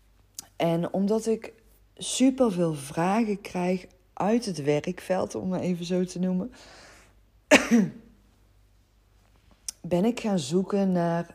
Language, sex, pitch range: Dutch, female, 145-195 Hz